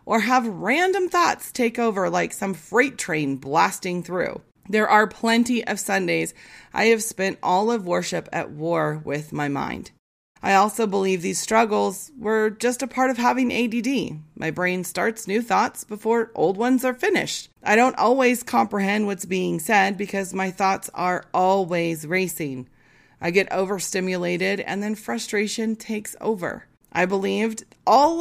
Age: 30-49